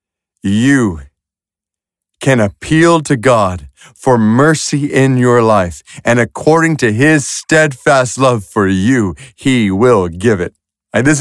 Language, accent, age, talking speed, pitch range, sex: English, American, 50-69, 130 wpm, 115-155 Hz, male